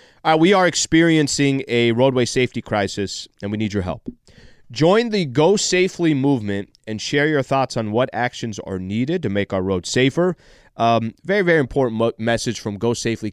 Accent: American